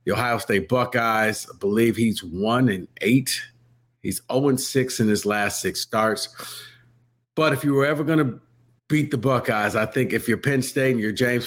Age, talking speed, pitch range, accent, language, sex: 50-69, 185 wpm, 120-190 Hz, American, English, male